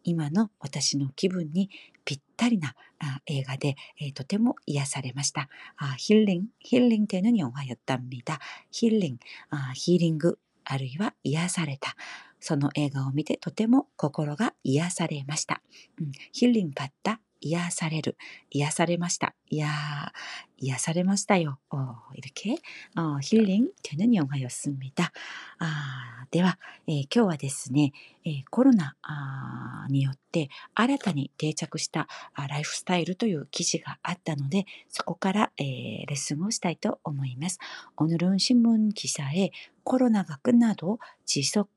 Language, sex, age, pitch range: Korean, female, 40-59, 145-215 Hz